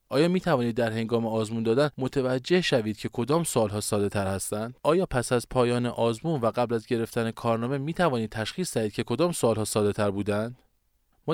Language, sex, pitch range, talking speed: Persian, male, 105-150 Hz, 190 wpm